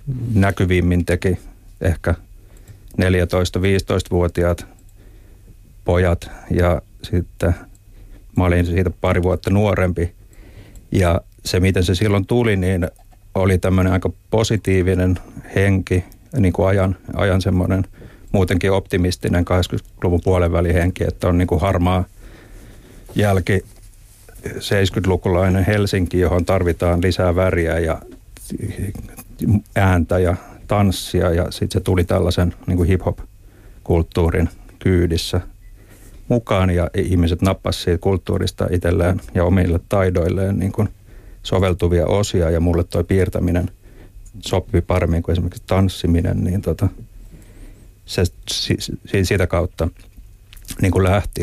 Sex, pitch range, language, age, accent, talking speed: male, 90-100 Hz, Finnish, 60-79, native, 105 wpm